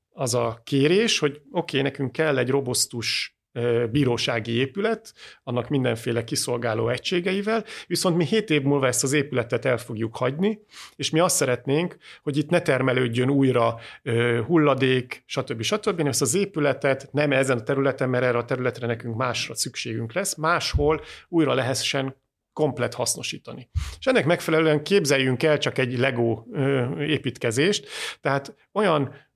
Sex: male